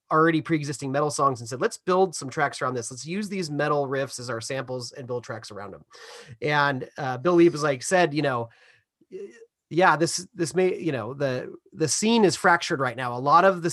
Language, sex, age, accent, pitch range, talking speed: English, male, 30-49, American, 135-165 Hz, 225 wpm